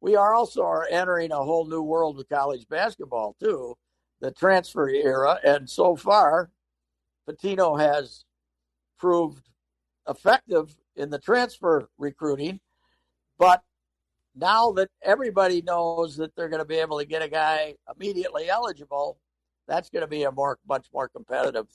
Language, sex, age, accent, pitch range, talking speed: English, male, 60-79, American, 130-180 Hz, 140 wpm